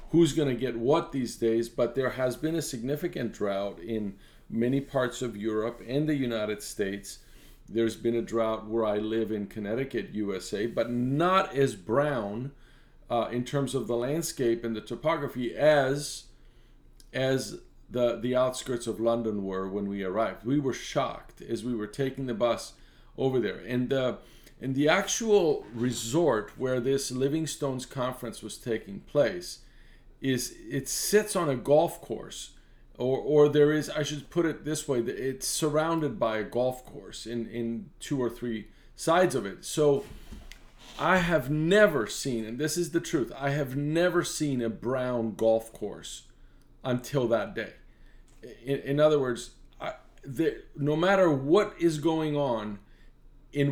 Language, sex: English, male